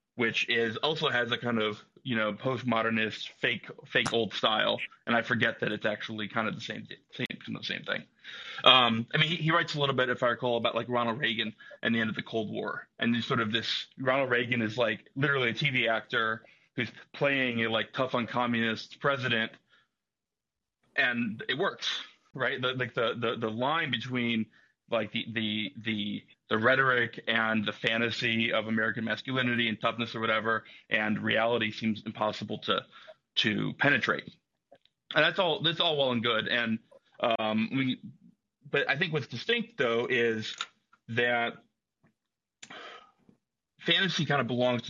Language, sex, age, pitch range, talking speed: English, male, 30-49, 110-130 Hz, 175 wpm